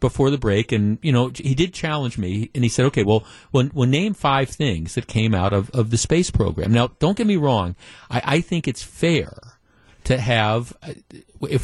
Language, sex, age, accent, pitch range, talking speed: English, male, 50-69, American, 105-135 Hz, 210 wpm